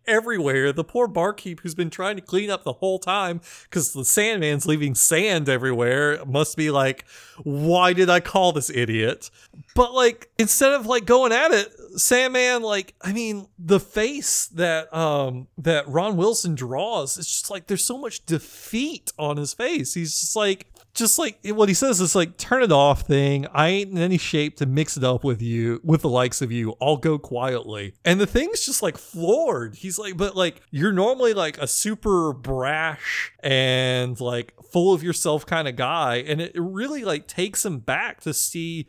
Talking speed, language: 195 wpm, English